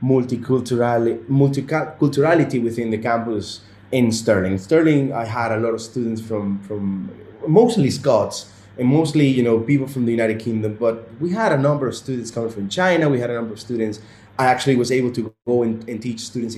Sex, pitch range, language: male, 110-135 Hz, English